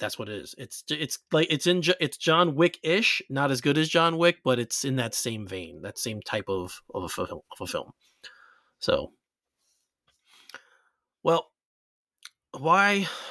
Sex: male